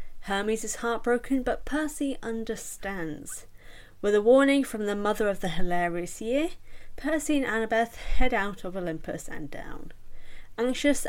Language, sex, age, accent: English, female, 10-29, British